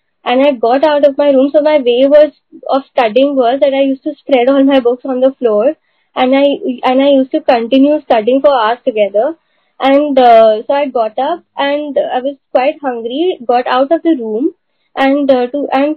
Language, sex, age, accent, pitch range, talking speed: Hindi, female, 10-29, native, 250-310 Hz, 215 wpm